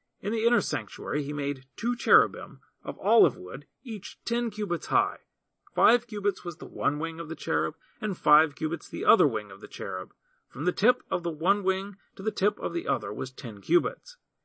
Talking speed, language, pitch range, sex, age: 205 wpm, English, 150-225 Hz, male, 40-59